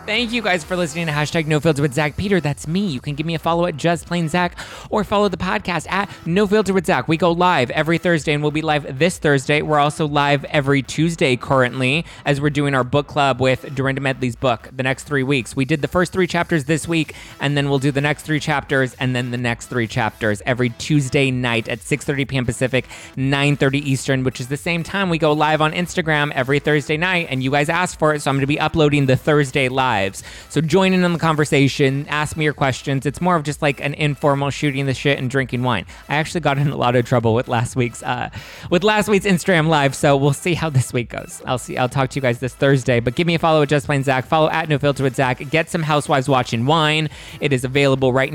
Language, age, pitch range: English, 20-39, 135-160 Hz